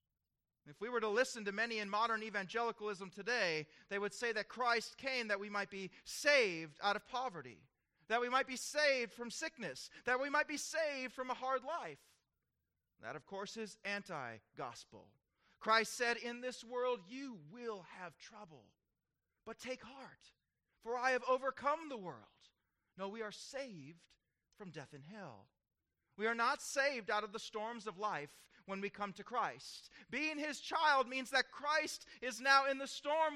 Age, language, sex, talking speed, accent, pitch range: 30-49, English, male, 175 wpm, American, 195-265 Hz